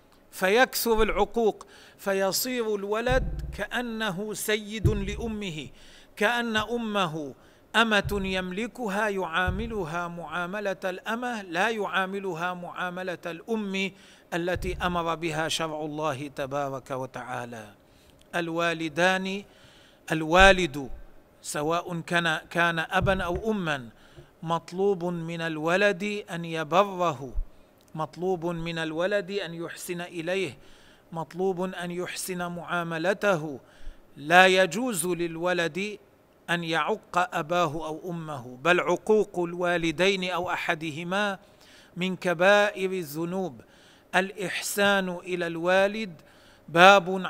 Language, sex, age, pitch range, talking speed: Arabic, male, 40-59, 165-195 Hz, 85 wpm